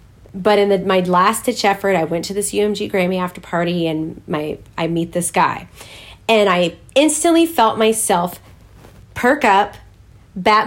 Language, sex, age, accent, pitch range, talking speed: English, female, 30-49, American, 170-240 Hz, 165 wpm